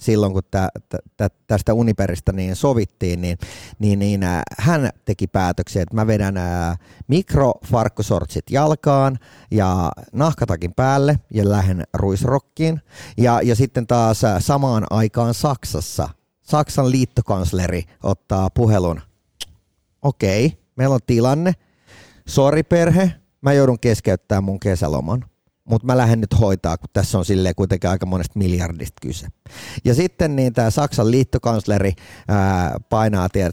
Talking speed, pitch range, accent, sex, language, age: 125 wpm, 95-130 Hz, native, male, Finnish, 30-49